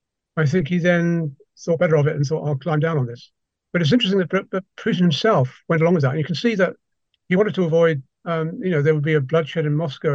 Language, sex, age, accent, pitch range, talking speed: English, male, 50-69, British, 145-175 Hz, 260 wpm